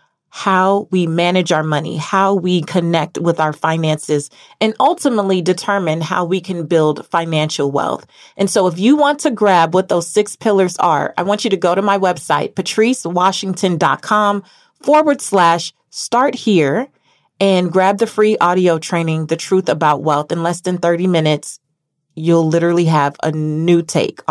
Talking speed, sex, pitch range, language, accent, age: 165 wpm, female, 170-220 Hz, English, American, 30-49